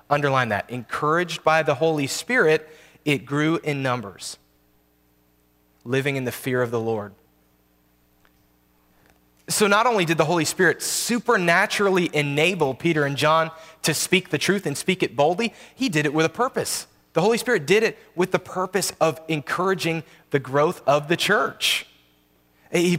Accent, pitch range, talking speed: American, 125-190 Hz, 155 wpm